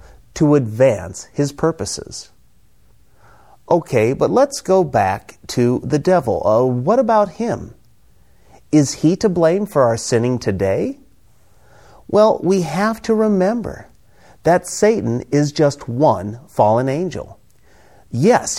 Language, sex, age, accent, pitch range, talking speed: English, male, 40-59, American, 115-185 Hz, 120 wpm